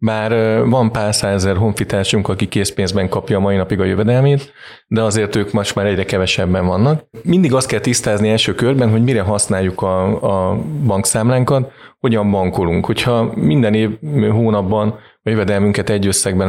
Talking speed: 155 wpm